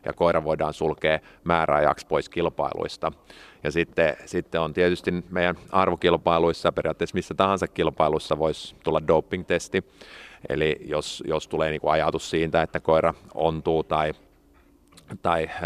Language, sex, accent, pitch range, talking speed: Finnish, male, native, 80-95 Hz, 120 wpm